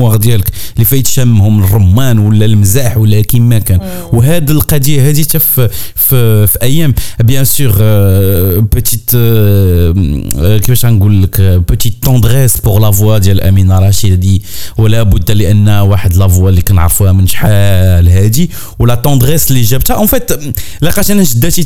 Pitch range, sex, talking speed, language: 100-135 Hz, male, 145 wpm, Arabic